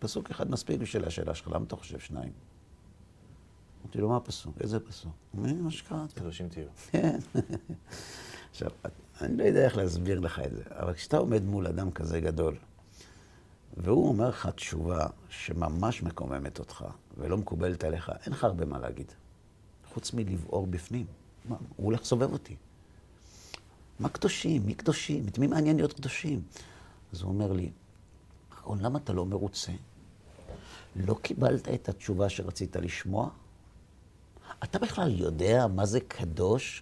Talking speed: 140 wpm